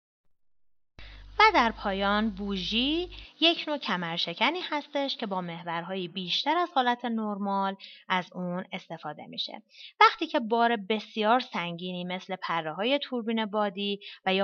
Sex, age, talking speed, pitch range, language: female, 30-49, 130 wpm, 175-250 Hz, Persian